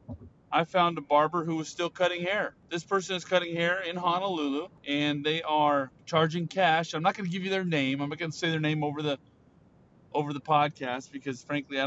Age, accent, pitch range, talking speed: 30-49, American, 145-185 Hz, 210 wpm